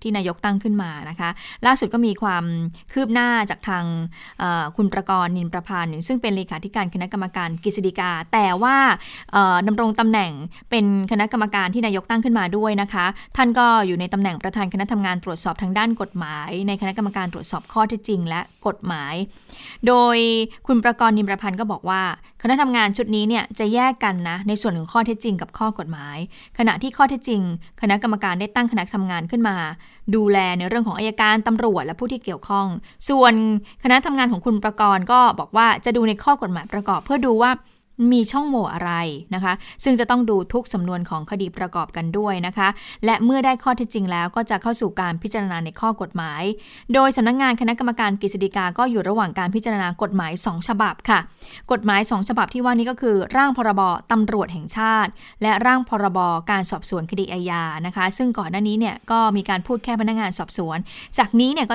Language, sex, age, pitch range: Thai, female, 20-39, 185-230 Hz